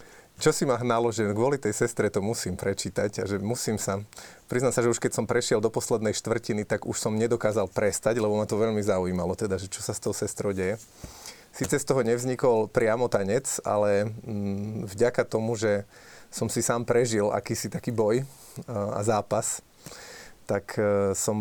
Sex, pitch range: male, 105-120 Hz